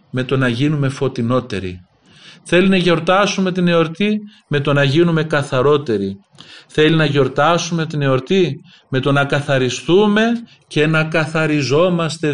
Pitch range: 120-160 Hz